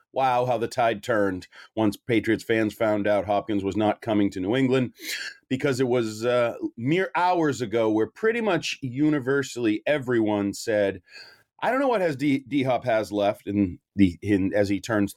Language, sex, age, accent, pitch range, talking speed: English, male, 30-49, American, 105-130 Hz, 180 wpm